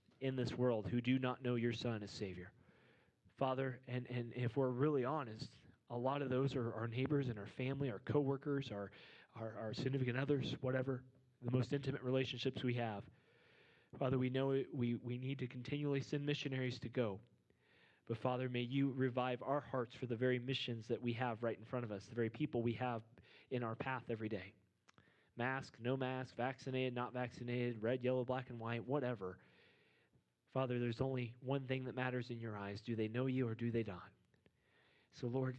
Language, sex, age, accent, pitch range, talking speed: English, male, 30-49, American, 110-130 Hz, 195 wpm